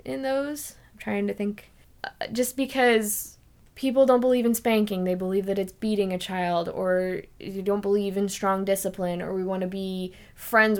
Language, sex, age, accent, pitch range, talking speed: English, female, 20-39, American, 185-215 Hz, 190 wpm